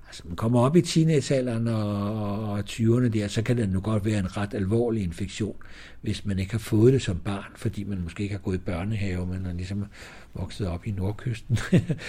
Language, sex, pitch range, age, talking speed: Danish, male, 95-115 Hz, 60-79, 215 wpm